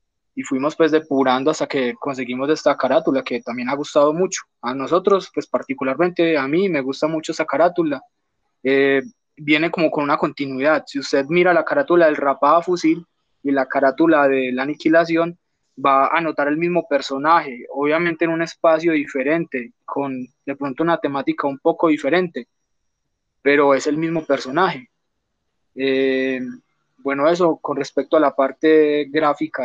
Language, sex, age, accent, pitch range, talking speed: Spanish, male, 20-39, Colombian, 135-165 Hz, 160 wpm